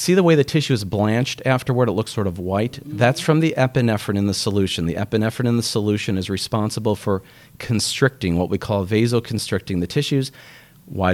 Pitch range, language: 95-130 Hz, English